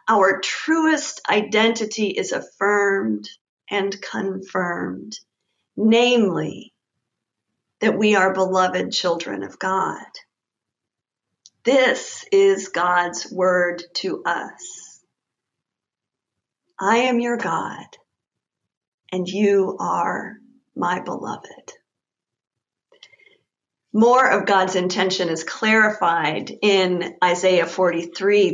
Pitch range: 185-235 Hz